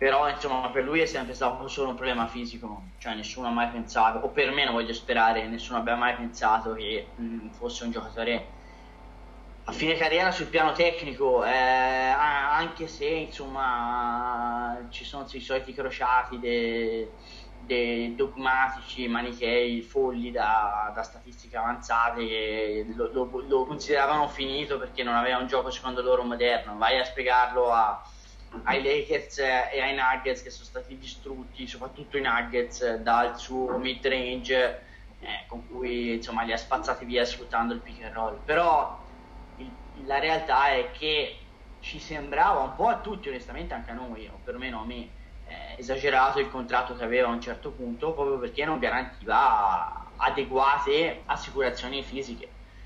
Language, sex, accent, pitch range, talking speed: Italian, male, native, 115-135 Hz, 155 wpm